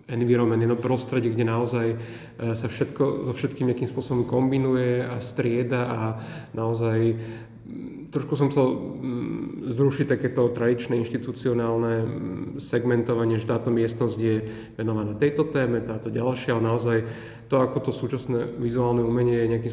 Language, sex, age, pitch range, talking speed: Slovak, male, 30-49, 115-130 Hz, 130 wpm